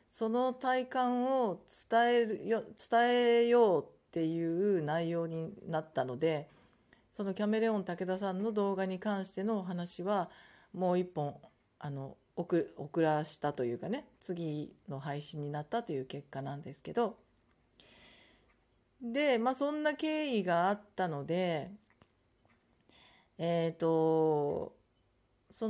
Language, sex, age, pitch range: Japanese, female, 40-59, 160-220 Hz